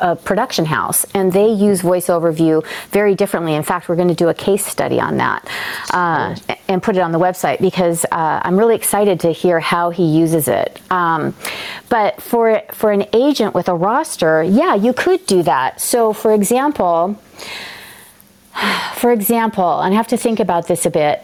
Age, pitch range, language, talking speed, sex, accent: 30-49, 170-210 Hz, English, 185 wpm, female, American